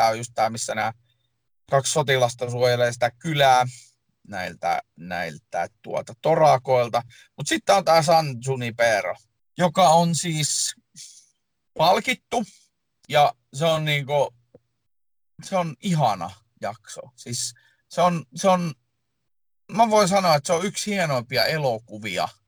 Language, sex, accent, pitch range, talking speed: Finnish, male, native, 115-160 Hz, 115 wpm